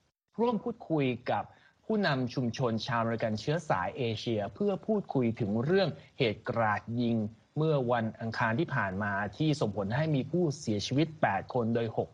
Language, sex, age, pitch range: Thai, male, 20-39, 115-155 Hz